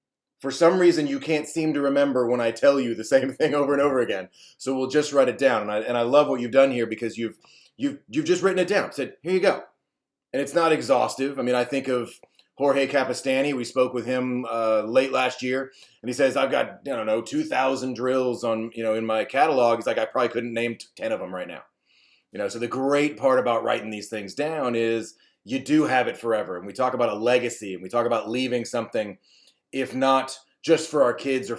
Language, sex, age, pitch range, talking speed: English, male, 30-49, 120-140 Hz, 245 wpm